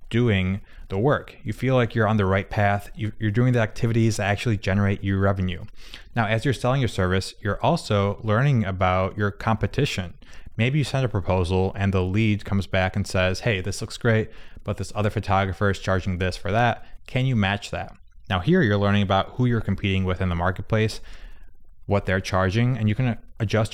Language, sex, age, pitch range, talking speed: English, male, 20-39, 95-115 Hz, 200 wpm